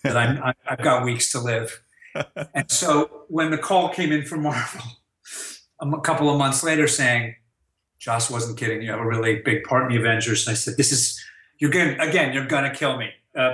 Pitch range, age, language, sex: 120-150 Hz, 50-69, English, male